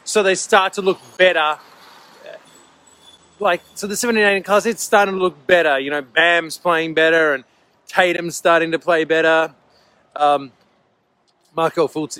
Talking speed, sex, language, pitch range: 150 wpm, male, English, 150-185 Hz